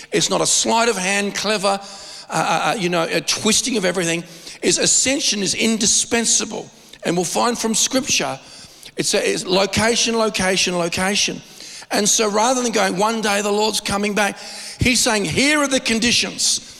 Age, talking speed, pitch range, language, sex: 50-69, 170 wpm, 170-220 Hz, English, male